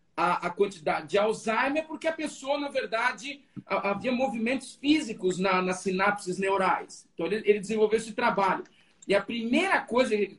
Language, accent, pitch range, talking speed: Portuguese, Brazilian, 200-255 Hz, 150 wpm